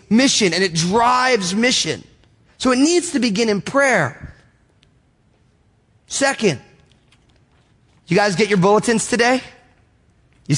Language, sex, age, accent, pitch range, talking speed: English, male, 30-49, American, 140-210 Hz, 115 wpm